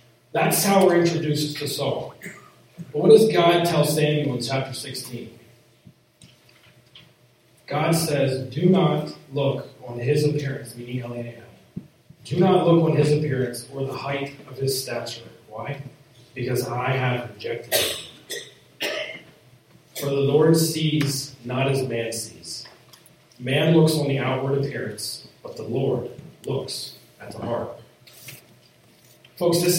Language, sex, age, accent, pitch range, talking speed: English, male, 30-49, American, 120-155 Hz, 135 wpm